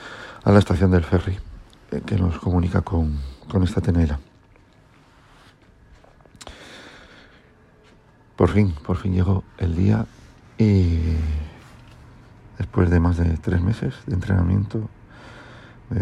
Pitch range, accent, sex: 90-115 Hz, Spanish, male